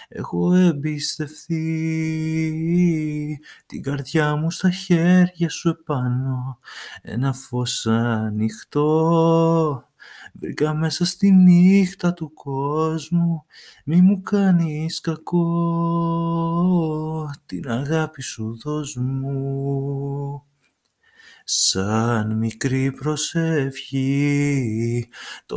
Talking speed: 70 wpm